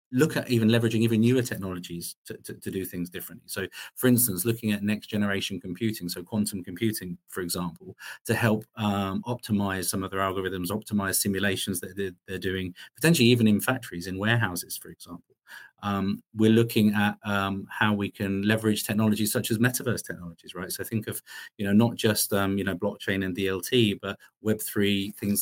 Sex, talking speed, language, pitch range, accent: male, 185 wpm, English, 95-110 Hz, British